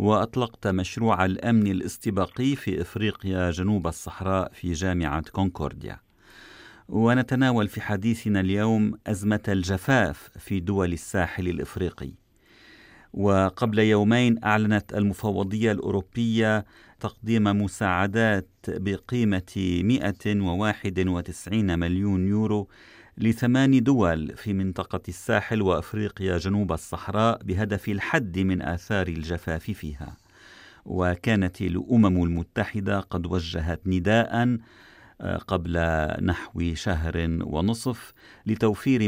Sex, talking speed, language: male, 90 wpm, Arabic